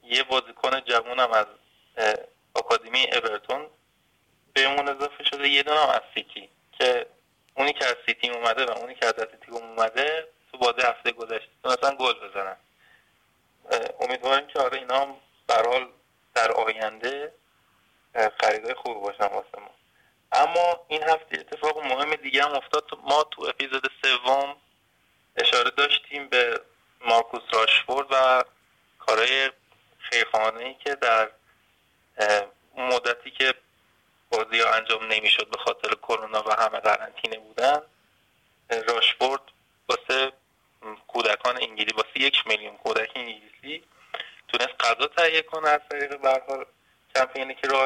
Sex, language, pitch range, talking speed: male, Persian, 115-140 Hz, 120 wpm